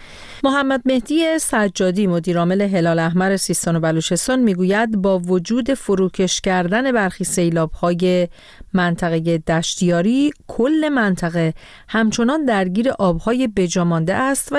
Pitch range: 165-210 Hz